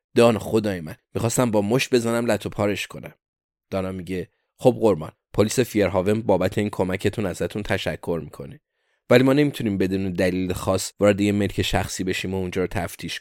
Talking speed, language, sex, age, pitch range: 170 wpm, Persian, male, 20-39, 95-120 Hz